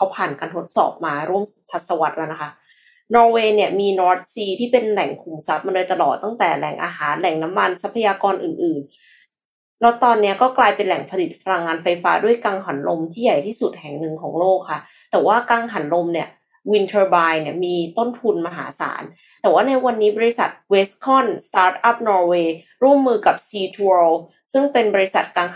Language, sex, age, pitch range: Thai, female, 20-39, 175-235 Hz